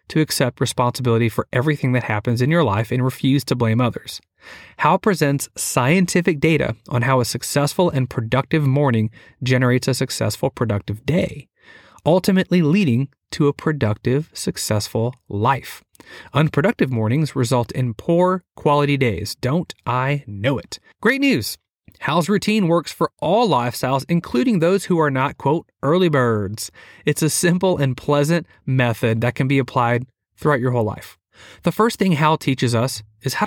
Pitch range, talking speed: 120-170 Hz, 155 wpm